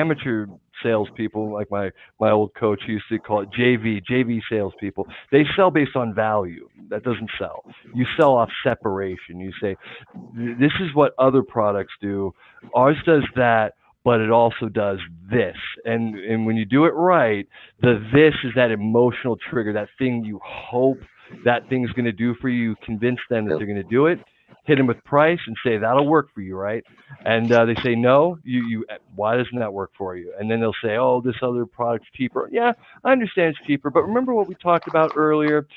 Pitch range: 105-135 Hz